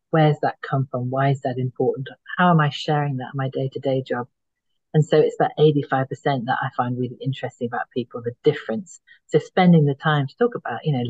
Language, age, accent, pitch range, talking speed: English, 40-59, British, 130-155 Hz, 215 wpm